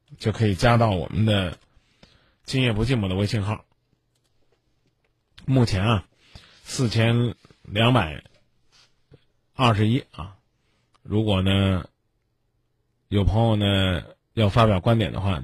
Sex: male